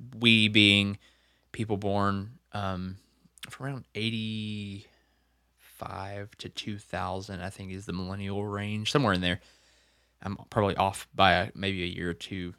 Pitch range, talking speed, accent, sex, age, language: 90-115 Hz, 140 wpm, American, male, 20-39, English